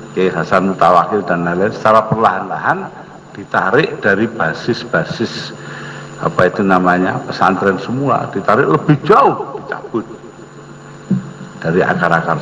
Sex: male